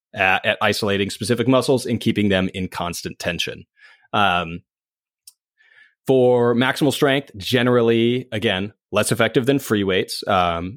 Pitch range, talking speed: 105-135 Hz, 125 wpm